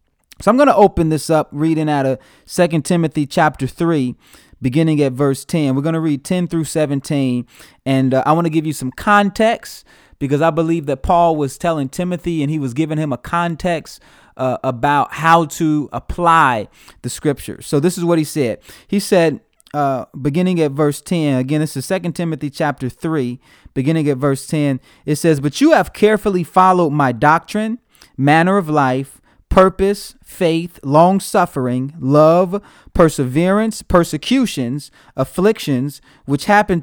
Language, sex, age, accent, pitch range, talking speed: English, male, 30-49, American, 140-180 Hz, 165 wpm